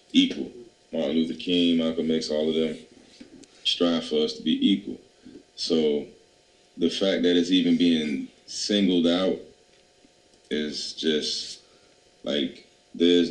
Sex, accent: male, American